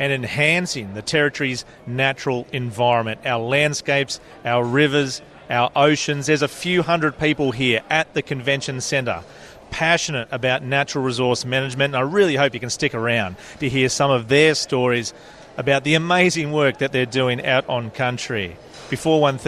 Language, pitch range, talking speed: English, 125-150 Hz, 160 wpm